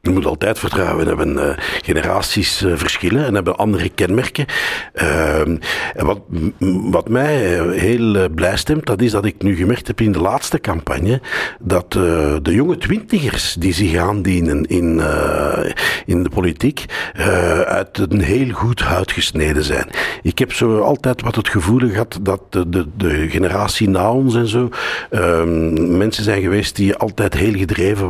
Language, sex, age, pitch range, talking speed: Dutch, male, 60-79, 90-120 Hz, 175 wpm